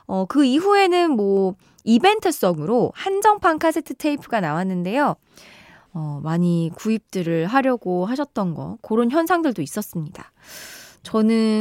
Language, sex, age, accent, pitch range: Korean, female, 20-39, native, 185-280 Hz